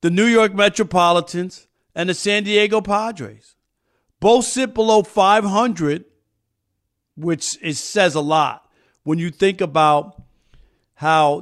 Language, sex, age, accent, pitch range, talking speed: English, male, 50-69, American, 145-180 Hz, 120 wpm